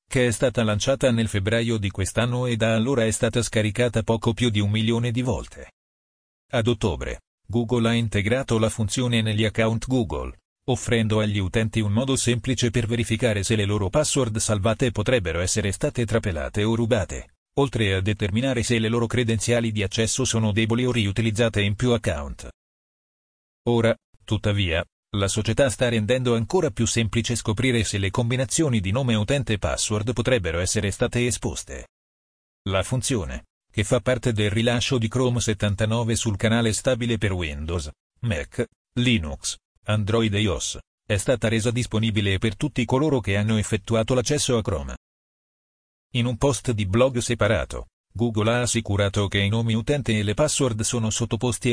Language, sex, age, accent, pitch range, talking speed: Italian, male, 40-59, native, 105-120 Hz, 160 wpm